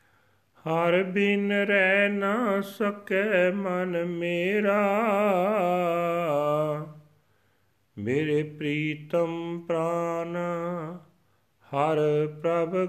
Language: Punjabi